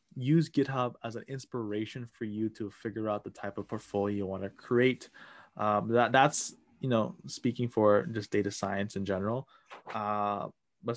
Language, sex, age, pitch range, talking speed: English, male, 20-39, 105-125 Hz, 175 wpm